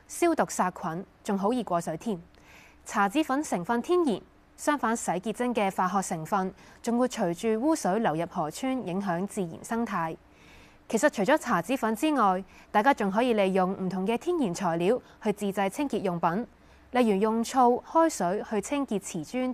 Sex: female